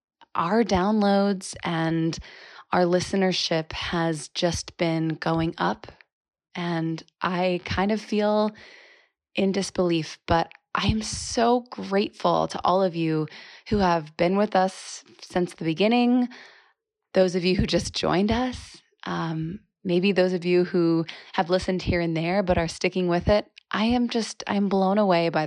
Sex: female